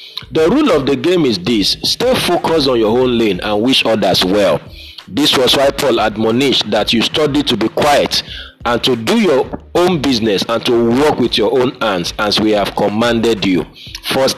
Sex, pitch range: male, 110-155 Hz